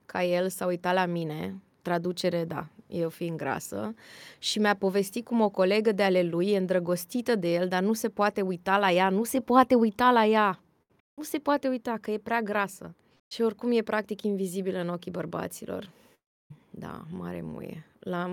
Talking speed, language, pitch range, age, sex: 185 wpm, Romanian, 180-215 Hz, 20-39, female